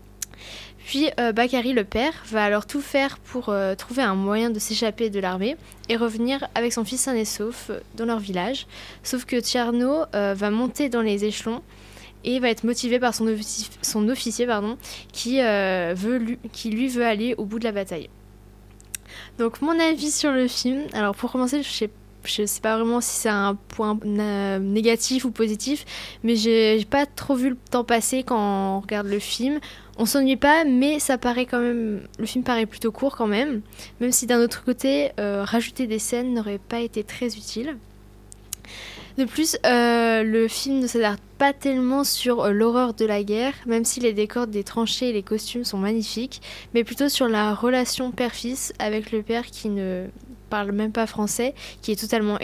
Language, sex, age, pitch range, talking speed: French, female, 10-29, 210-250 Hz, 195 wpm